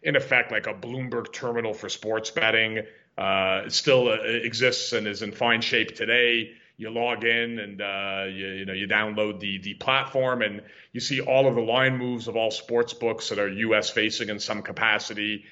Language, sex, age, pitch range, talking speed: English, male, 40-59, 105-125 Hz, 195 wpm